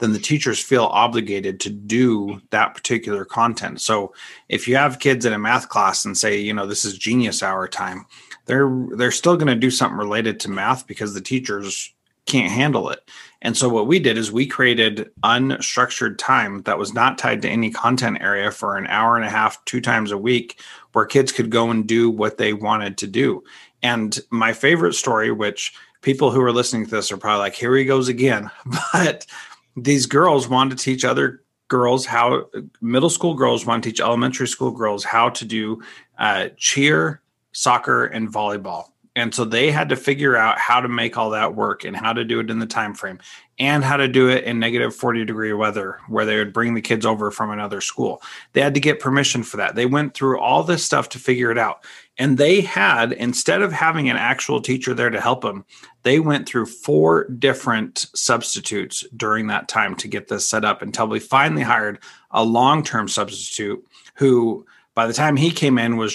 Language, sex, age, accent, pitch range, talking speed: English, male, 30-49, American, 110-130 Hz, 205 wpm